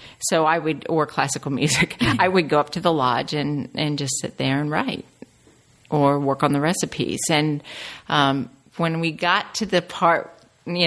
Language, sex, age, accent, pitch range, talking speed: English, female, 50-69, American, 140-170 Hz, 190 wpm